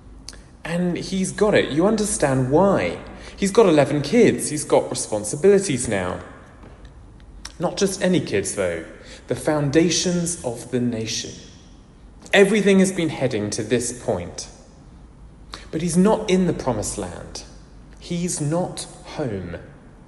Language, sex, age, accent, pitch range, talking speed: English, male, 30-49, British, 115-175 Hz, 125 wpm